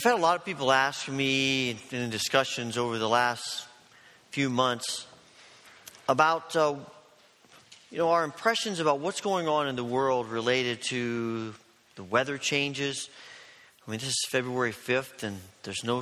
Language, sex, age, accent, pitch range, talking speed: English, male, 40-59, American, 120-165 Hz, 155 wpm